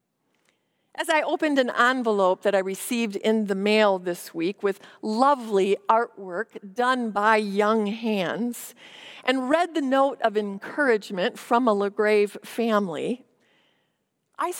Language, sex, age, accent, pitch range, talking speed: English, female, 50-69, American, 200-270 Hz, 125 wpm